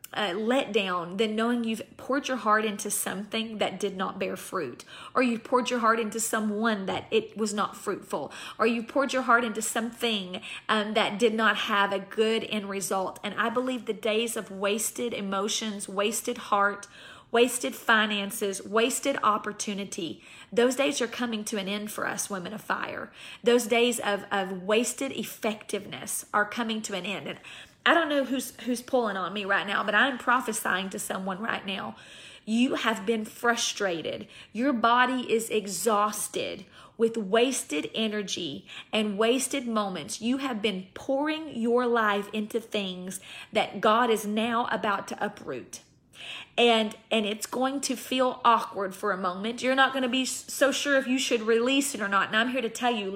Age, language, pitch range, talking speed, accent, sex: 40-59, English, 205-245 Hz, 180 wpm, American, female